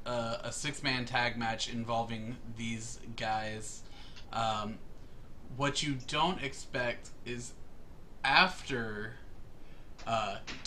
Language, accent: English, American